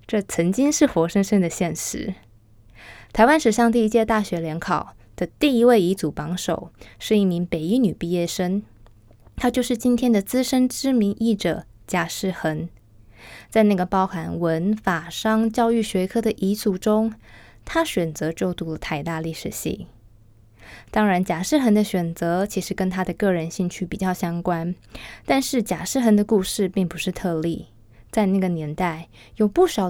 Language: Chinese